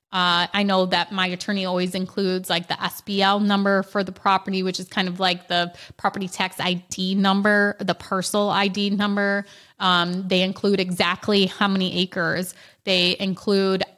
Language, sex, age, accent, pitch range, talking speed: English, female, 20-39, American, 185-200 Hz, 165 wpm